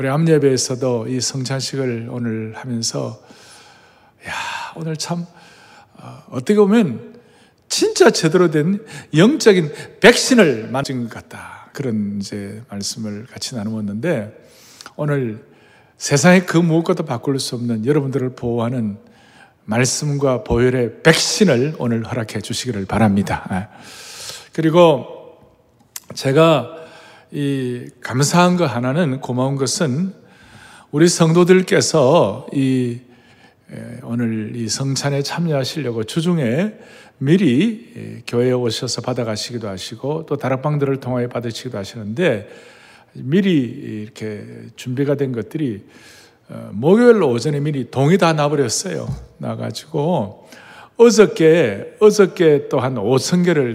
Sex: male